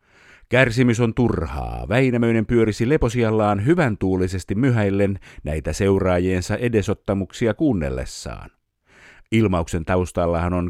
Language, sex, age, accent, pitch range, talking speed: Finnish, male, 50-69, native, 85-110 Hz, 90 wpm